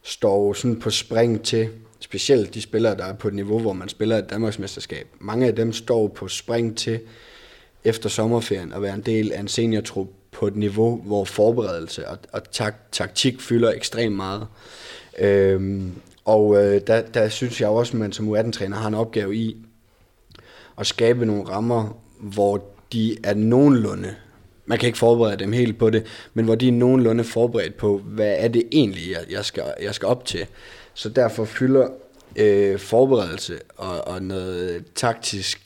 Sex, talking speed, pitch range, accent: male, 170 wpm, 100-115 Hz, native